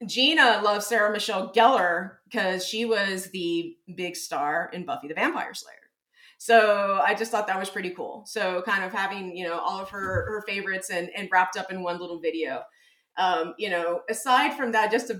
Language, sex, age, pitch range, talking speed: English, female, 30-49, 185-260 Hz, 200 wpm